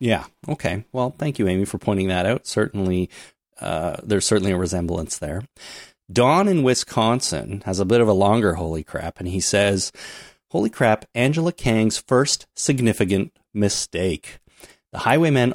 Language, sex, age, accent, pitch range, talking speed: English, male, 30-49, American, 95-125 Hz, 155 wpm